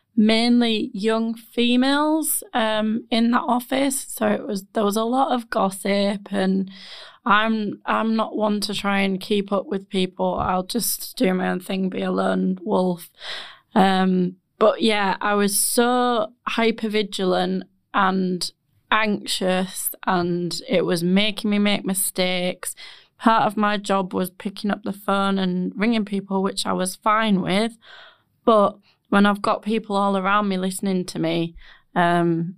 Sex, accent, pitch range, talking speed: female, British, 185-215 Hz, 155 wpm